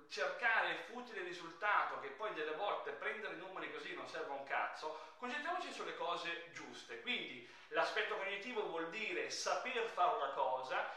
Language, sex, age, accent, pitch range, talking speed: Italian, male, 30-49, native, 175-275 Hz, 165 wpm